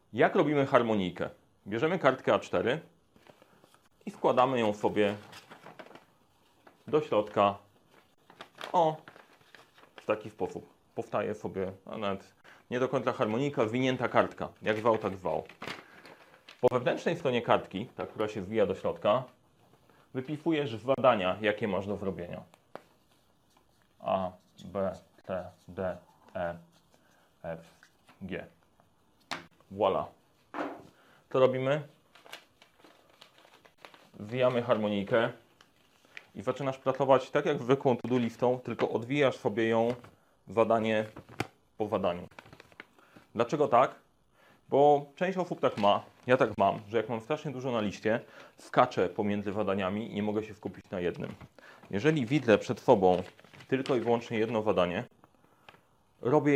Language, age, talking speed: Polish, 30-49, 115 wpm